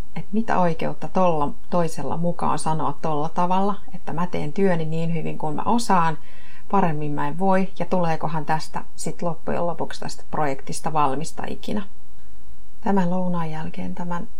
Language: Finnish